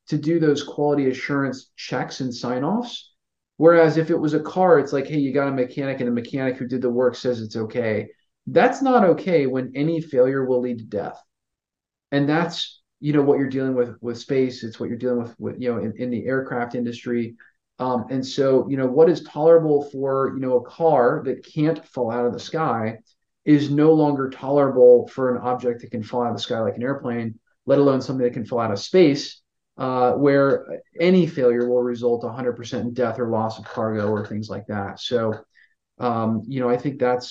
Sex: male